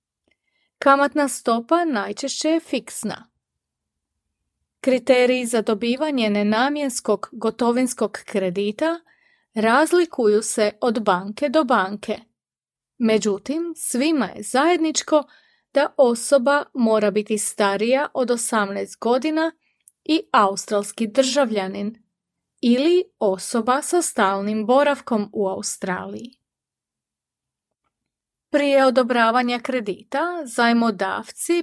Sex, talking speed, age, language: female, 80 wpm, 30-49, Croatian